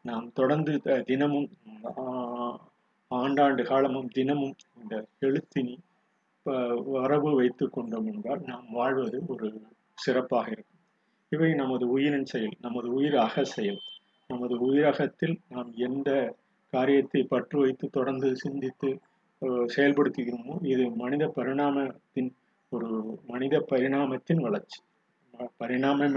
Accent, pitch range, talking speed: native, 125-150 Hz, 95 wpm